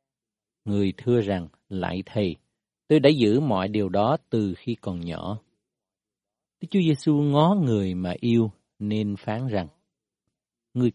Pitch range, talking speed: 95-135 Hz, 135 wpm